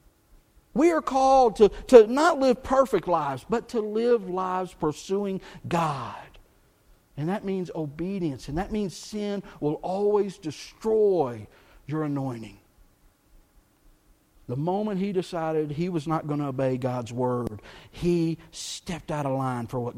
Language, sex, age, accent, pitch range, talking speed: English, male, 50-69, American, 150-230 Hz, 140 wpm